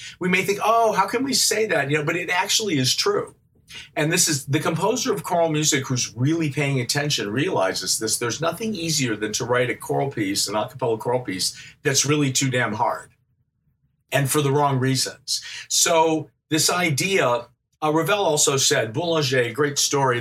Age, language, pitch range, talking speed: 50-69, English, 130-165 Hz, 190 wpm